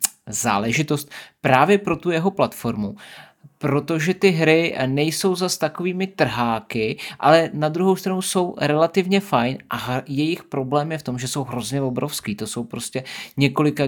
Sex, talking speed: male, 145 wpm